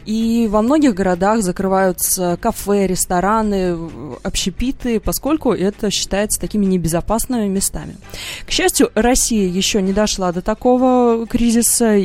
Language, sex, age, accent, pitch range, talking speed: Russian, female, 20-39, native, 175-230 Hz, 115 wpm